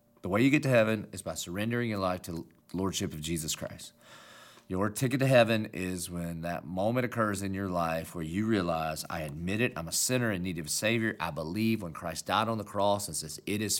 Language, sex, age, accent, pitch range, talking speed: English, male, 40-59, American, 95-125 Hz, 240 wpm